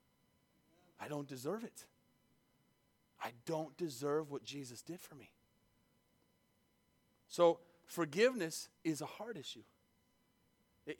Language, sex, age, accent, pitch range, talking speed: English, male, 30-49, American, 135-195 Hz, 105 wpm